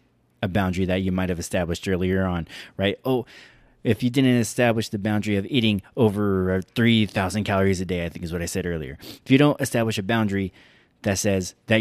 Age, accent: 20-39, American